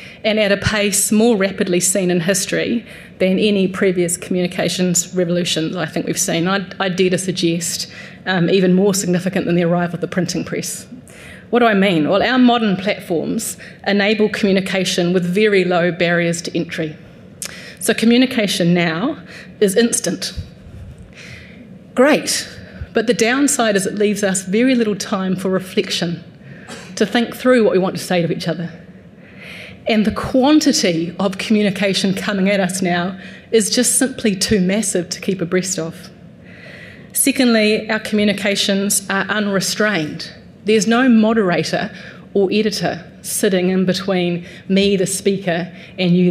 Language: English